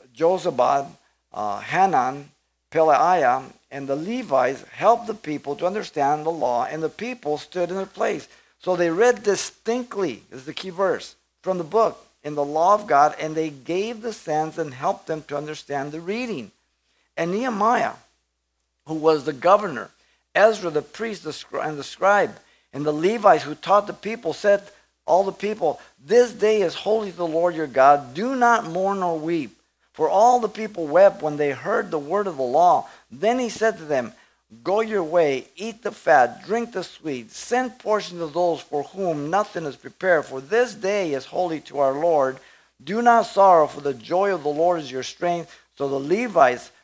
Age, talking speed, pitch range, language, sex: 50-69, 185 wpm, 150-205 Hz, English, male